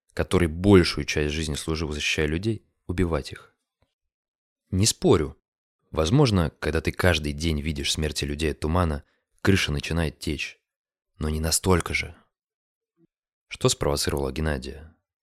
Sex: male